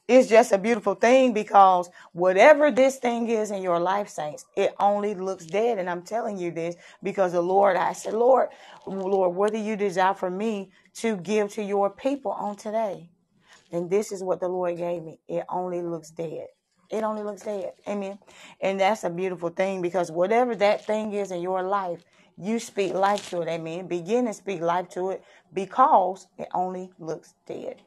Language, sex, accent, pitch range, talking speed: English, female, American, 180-215 Hz, 195 wpm